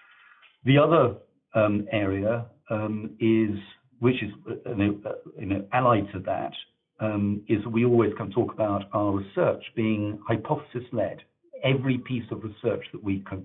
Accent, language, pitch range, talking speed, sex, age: British, English, 100-115 Hz, 145 wpm, male, 50-69